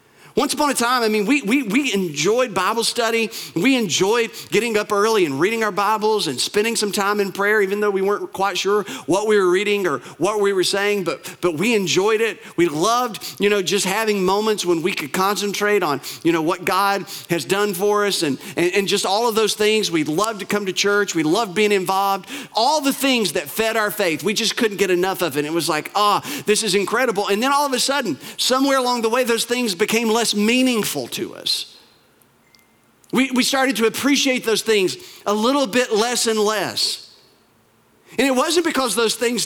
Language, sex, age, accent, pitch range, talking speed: English, male, 40-59, American, 195-240 Hz, 215 wpm